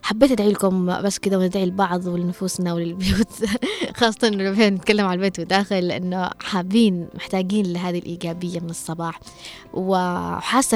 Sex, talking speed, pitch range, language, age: female, 130 wpm, 180-260 Hz, Arabic, 20-39